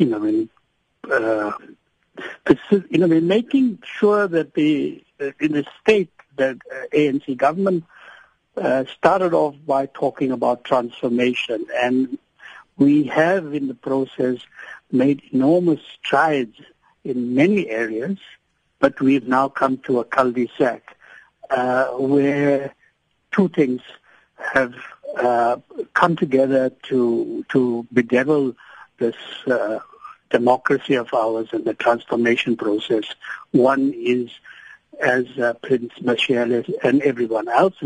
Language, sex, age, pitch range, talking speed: English, male, 60-79, 125-170 Hz, 120 wpm